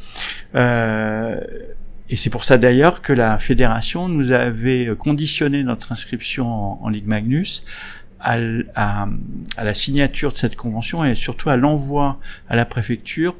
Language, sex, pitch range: French, male, 110-140 Hz